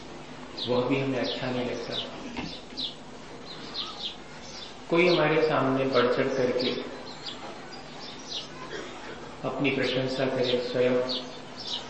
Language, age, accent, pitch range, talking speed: Hindi, 40-59, native, 125-140 Hz, 80 wpm